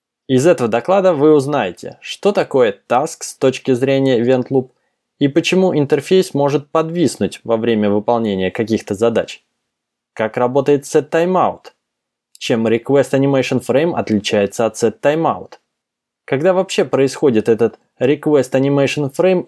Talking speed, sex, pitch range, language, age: 110 wpm, male, 125-160 Hz, Russian, 20-39